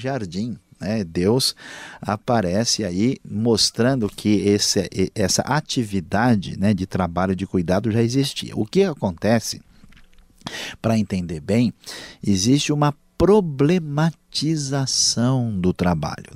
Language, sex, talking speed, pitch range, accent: Portuguese, male, 100 wpm, 95-125 Hz, Brazilian